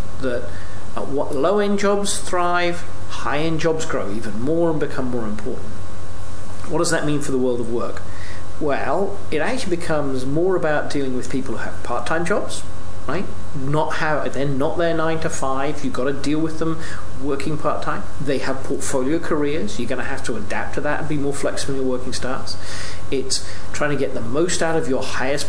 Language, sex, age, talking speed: English, male, 40-59, 200 wpm